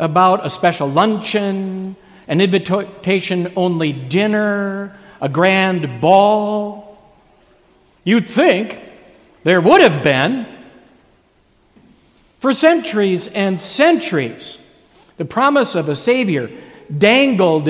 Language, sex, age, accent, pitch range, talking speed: English, male, 60-79, American, 180-225 Hz, 90 wpm